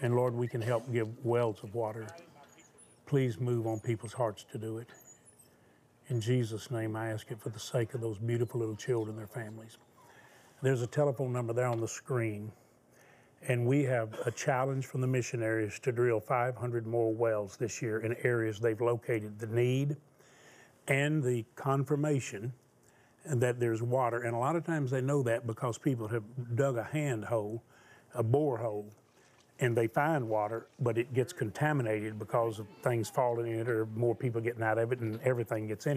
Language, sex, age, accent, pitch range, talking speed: English, male, 40-59, American, 115-135 Hz, 185 wpm